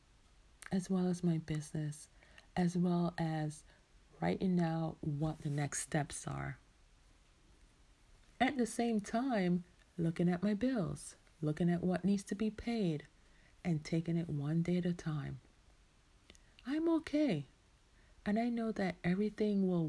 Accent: American